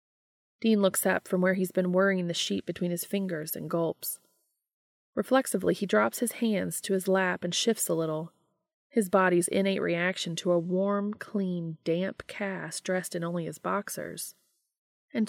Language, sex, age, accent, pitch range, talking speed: English, female, 30-49, American, 175-235 Hz, 170 wpm